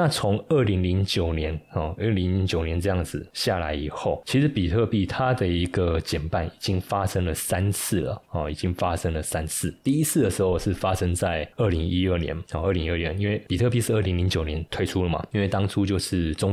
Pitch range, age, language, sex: 85-100 Hz, 20-39, Chinese, male